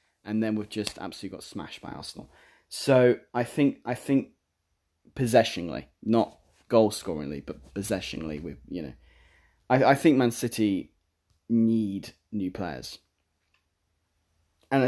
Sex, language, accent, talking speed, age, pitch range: male, English, British, 130 wpm, 20-39, 85-115 Hz